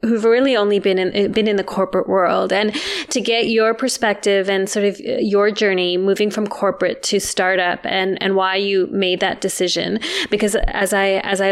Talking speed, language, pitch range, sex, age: 195 wpm, English, 185-210 Hz, female, 20-39